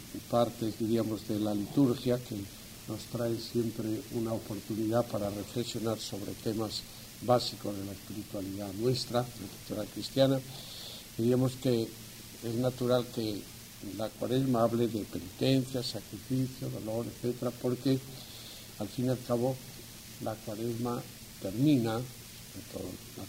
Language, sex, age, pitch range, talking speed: English, male, 60-79, 105-120 Hz, 120 wpm